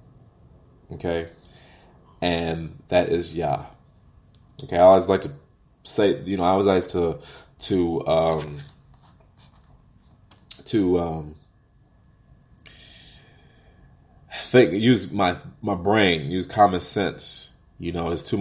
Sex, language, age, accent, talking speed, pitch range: male, English, 30-49, American, 110 wpm, 80-95 Hz